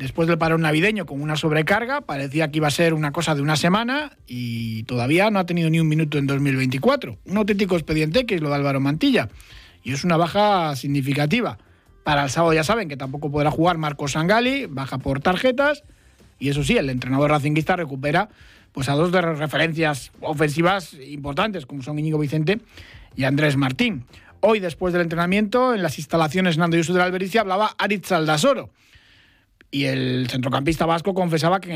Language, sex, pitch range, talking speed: Spanish, male, 140-180 Hz, 185 wpm